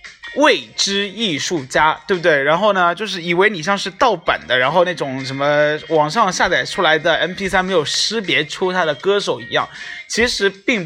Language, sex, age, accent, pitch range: Chinese, male, 20-39, native, 155-200 Hz